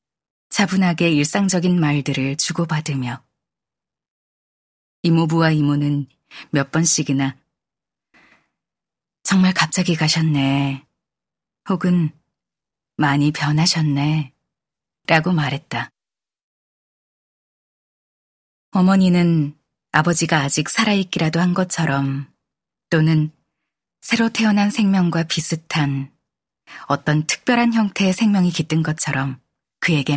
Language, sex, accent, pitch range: Korean, female, native, 145-180 Hz